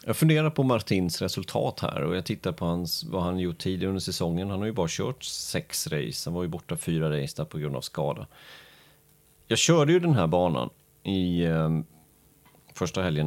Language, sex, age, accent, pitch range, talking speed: Swedish, male, 30-49, native, 80-120 Hz, 200 wpm